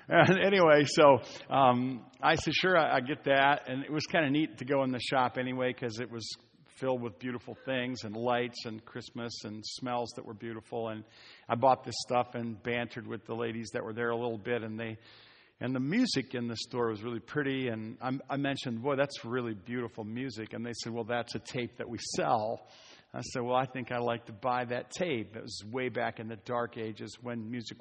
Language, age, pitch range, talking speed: English, 50-69, 115-135 Hz, 230 wpm